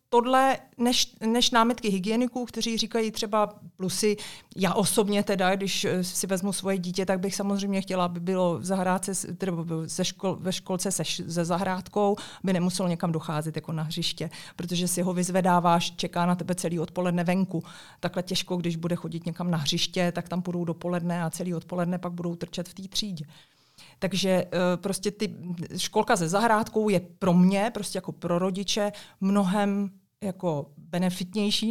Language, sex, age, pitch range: Czech, female, 30-49, 175-210 Hz